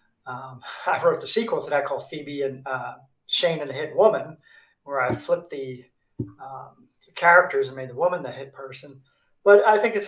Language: English